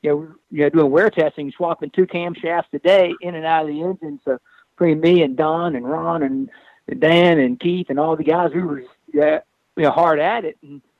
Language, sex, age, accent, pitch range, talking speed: English, male, 50-69, American, 150-190 Hz, 235 wpm